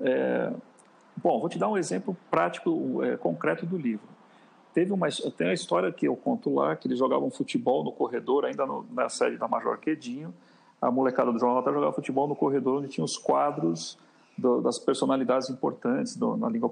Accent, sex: Brazilian, male